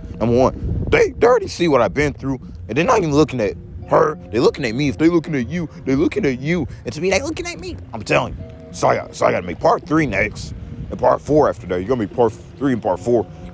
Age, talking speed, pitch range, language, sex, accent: 30-49, 290 wpm, 85-130 Hz, English, male, American